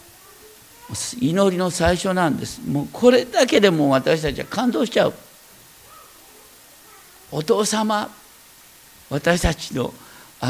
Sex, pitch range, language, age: male, 135-225 Hz, Japanese, 50-69